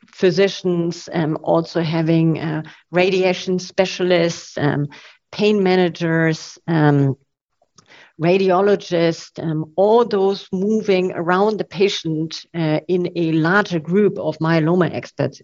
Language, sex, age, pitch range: English, female, 50-69, 165-195 Hz